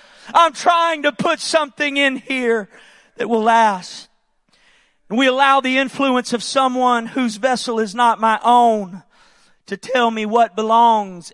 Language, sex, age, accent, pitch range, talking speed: English, male, 40-59, American, 210-245 Hz, 145 wpm